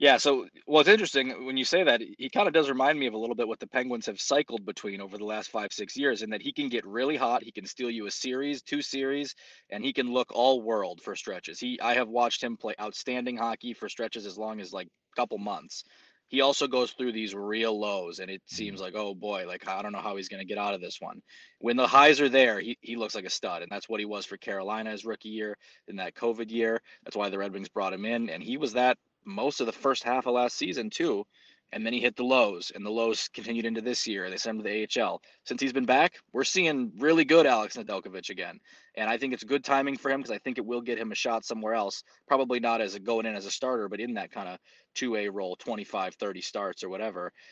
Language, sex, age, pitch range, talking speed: English, male, 20-39, 110-135 Hz, 265 wpm